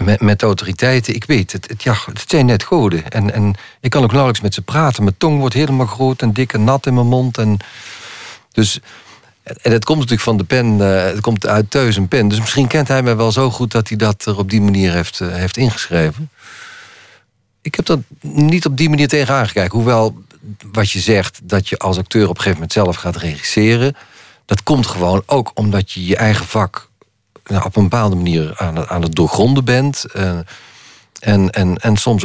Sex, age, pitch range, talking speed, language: male, 50-69, 95-120 Hz, 210 wpm, Dutch